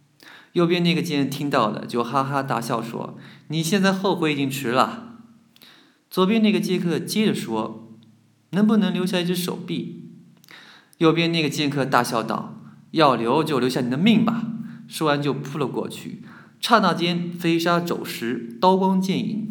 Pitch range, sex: 135-200 Hz, male